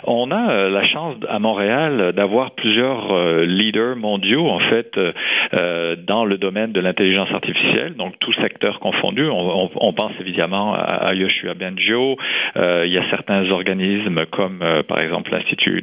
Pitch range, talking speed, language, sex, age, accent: 95-110 Hz, 140 wpm, French, male, 40-59, French